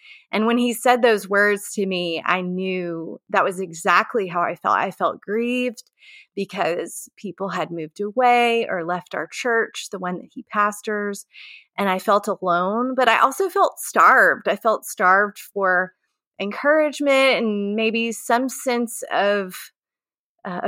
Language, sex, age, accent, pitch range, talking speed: English, female, 30-49, American, 195-255 Hz, 155 wpm